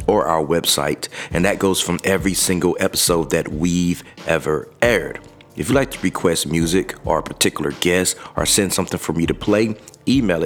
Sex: male